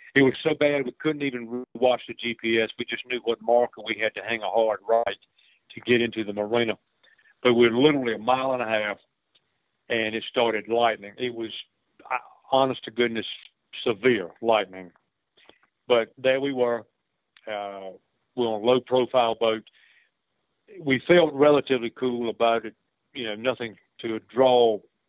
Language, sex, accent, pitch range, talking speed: English, male, American, 110-125 Hz, 165 wpm